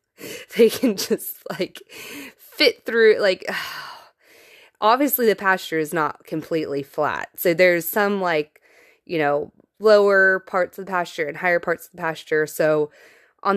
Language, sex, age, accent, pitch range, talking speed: English, female, 20-39, American, 170-245 Hz, 145 wpm